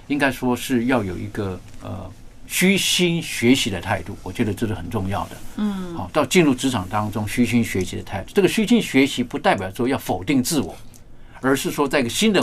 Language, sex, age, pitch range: Chinese, male, 50-69, 105-125 Hz